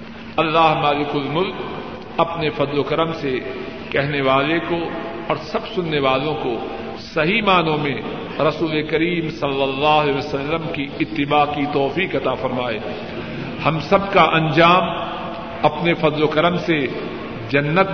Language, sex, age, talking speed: Urdu, male, 50-69, 135 wpm